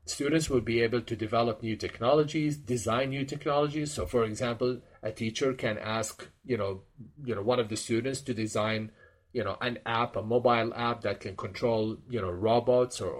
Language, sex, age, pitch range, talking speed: English, male, 30-49, 110-130 Hz, 190 wpm